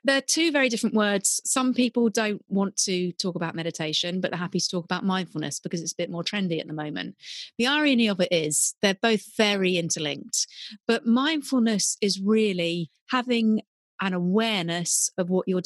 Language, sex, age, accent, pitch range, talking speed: English, female, 30-49, British, 175-225 Hz, 185 wpm